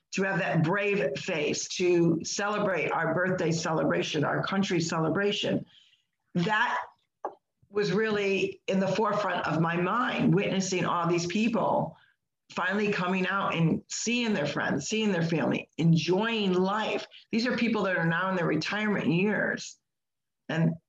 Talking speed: 140 wpm